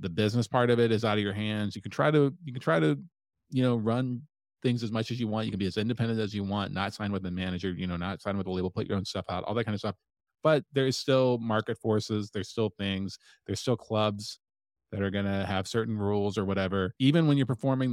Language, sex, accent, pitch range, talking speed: English, male, American, 95-115 Hz, 270 wpm